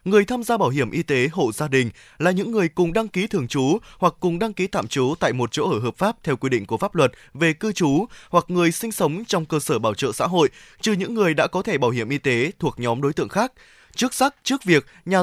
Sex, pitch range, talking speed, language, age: male, 150-200 Hz, 275 wpm, Vietnamese, 20-39